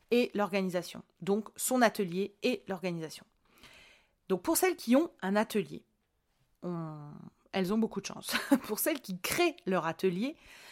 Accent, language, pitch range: French, French, 175-215 Hz